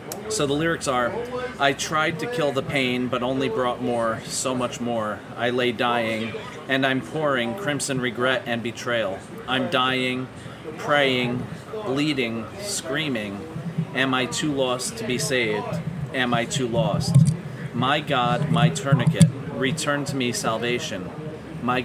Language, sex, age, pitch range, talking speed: English, male, 40-59, 120-145 Hz, 145 wpm